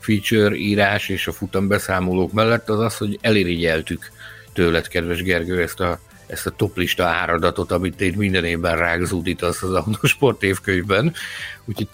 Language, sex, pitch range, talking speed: Hungarian, male, 90-115 Hz, 145 wpm